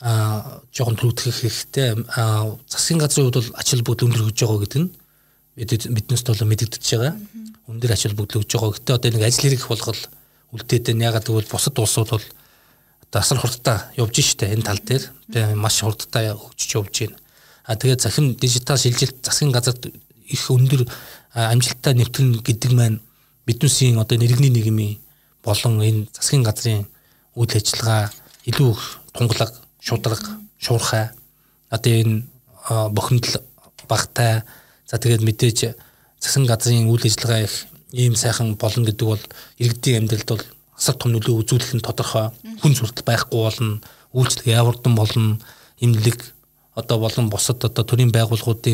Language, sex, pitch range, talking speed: Russian, male, 110-130 Hz, 80 wpm